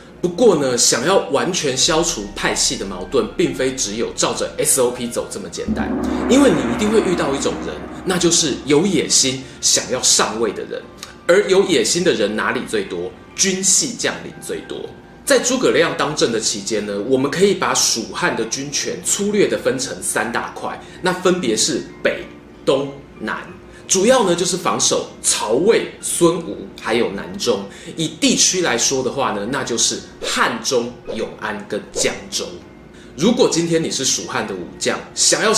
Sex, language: male, Chinese